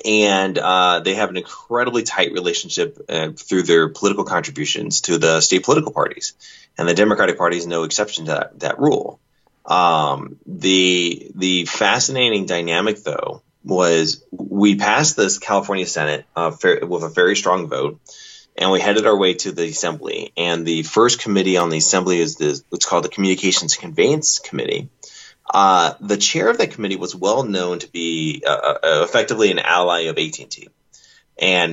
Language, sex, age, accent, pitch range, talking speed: English, male, 30-49, American, 85-100 Hz, 170 wpm